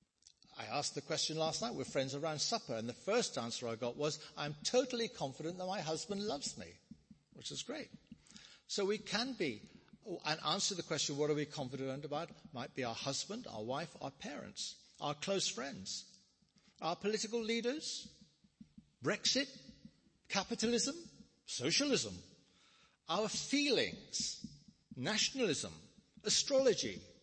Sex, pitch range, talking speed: male, 125-195 Hz, 135 wpm